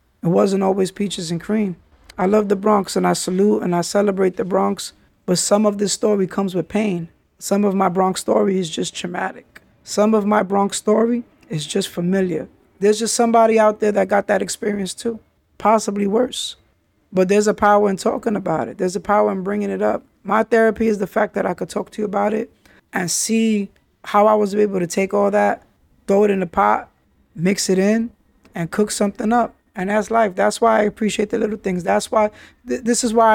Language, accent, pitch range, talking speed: English, American, 195-225 Hz, 215 wpm